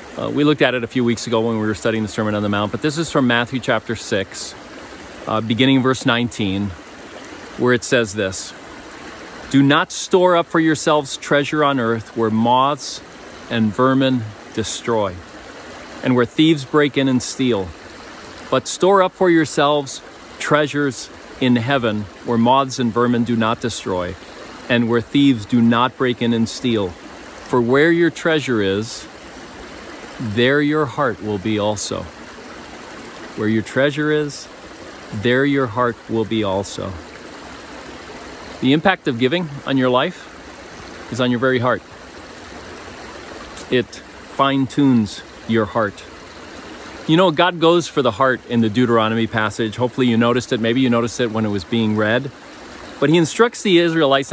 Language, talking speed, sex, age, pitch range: English, 160 wpm, male, 40-59, 115-145 Hz